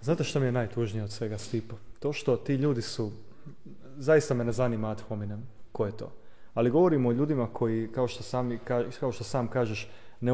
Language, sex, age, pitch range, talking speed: Croatian, male, 30-49, 110-130 Hz, 180 wpm